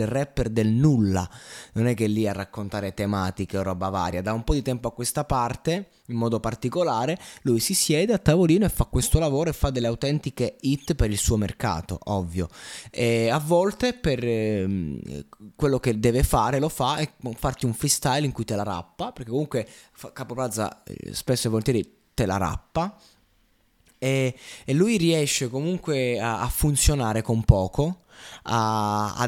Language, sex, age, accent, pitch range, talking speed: Italian, male, 20-39, native, 100-135 Hz, 170 wpm